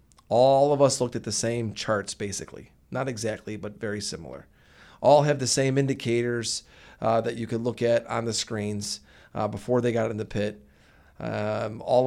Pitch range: 105-135 Hz